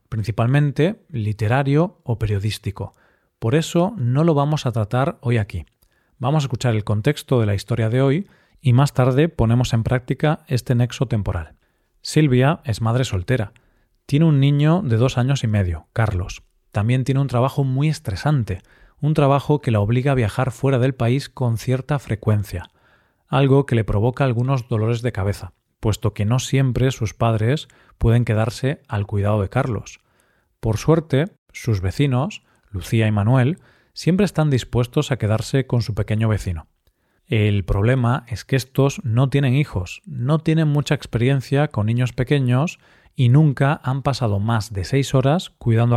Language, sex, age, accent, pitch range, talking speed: Spanish, male, 40-59, Spanish, 110-140 Hz, 160 wpm